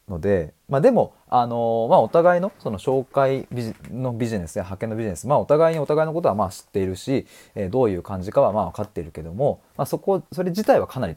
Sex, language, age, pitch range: male, Japanese, 20-39, 95-140 Hz